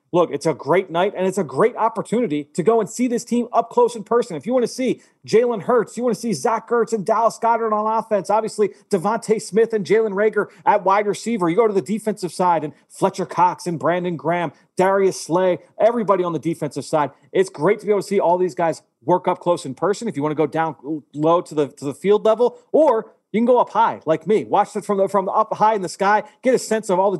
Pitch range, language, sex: 155-210 Hz, English, male